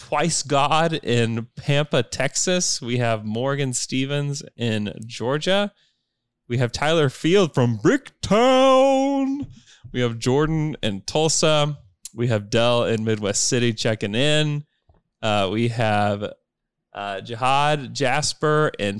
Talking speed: 115 wpm